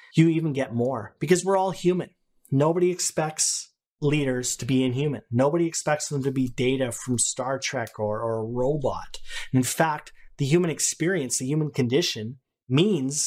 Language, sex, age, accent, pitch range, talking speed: English, male, 30-49, American, 130-170 Hz, 165 wpm